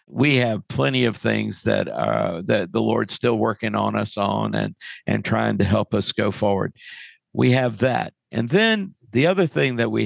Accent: American